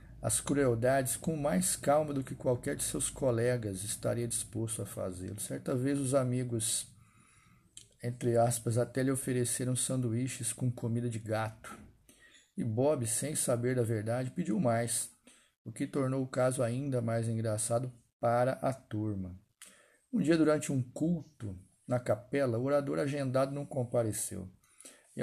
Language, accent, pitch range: Portuguese, Brazilian, 115-140 Hz